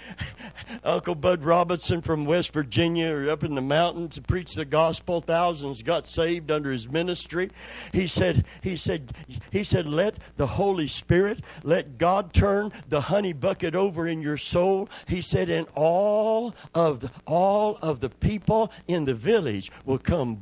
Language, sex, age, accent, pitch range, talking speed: English, male, 60-79, American, 145-180 Hz, 165 wpm